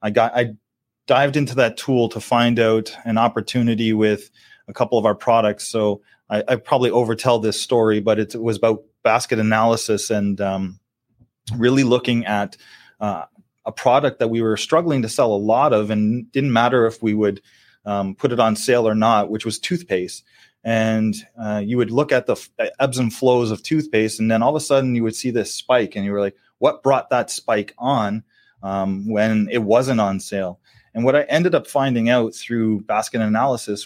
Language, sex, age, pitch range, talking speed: English, male, 30-49, 110-125 Hz, 200 wpm